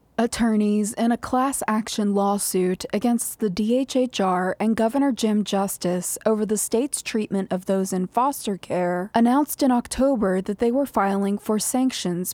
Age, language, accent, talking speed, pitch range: 20-39, English, American, 145 wpm, 185-230 Hz